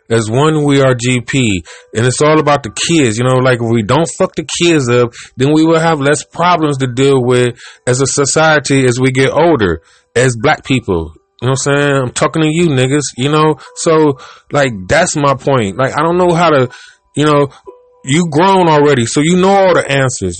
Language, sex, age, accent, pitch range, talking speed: English, male, 20-39, American, 130-165 Hz, 220 wpm